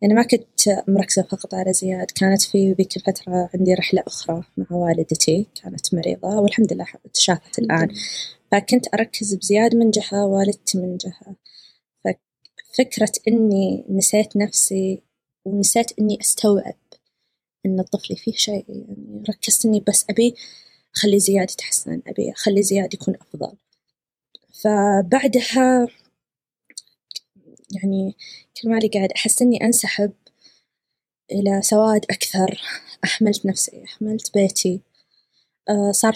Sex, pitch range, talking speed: female, 195-225 Hz, 115 wpm